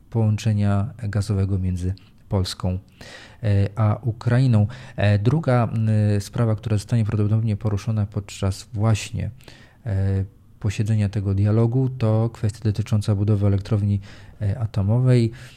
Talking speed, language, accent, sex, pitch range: 90 wpm, Polish, native, male, 100-115 Hz